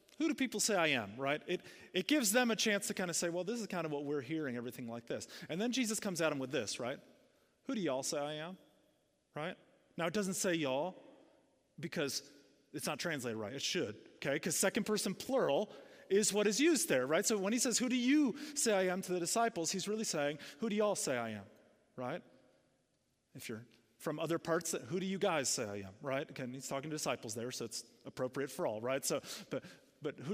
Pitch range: 145-215 Hz